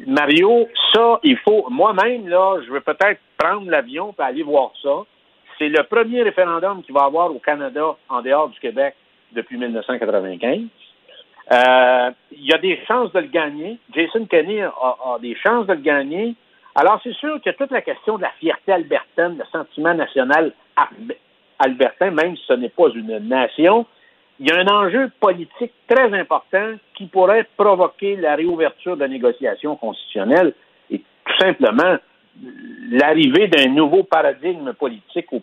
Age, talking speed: 60-79, 160 wpm